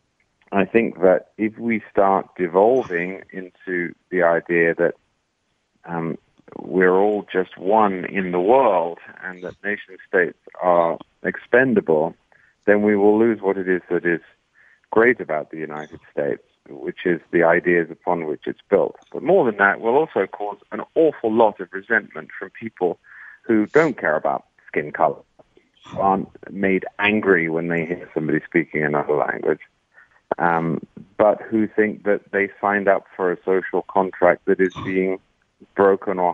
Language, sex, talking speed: English, male, 155 wpm